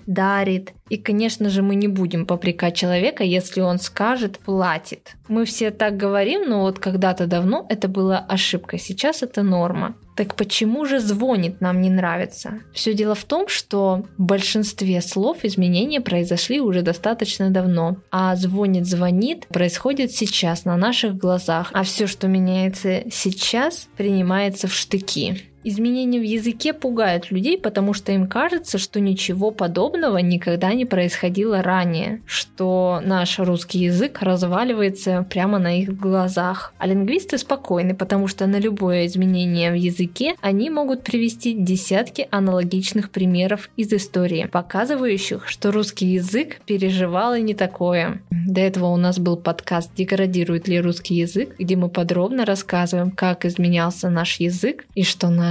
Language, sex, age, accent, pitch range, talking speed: Russian, female, 20-39, native, 180-215 Hz, 145 wpm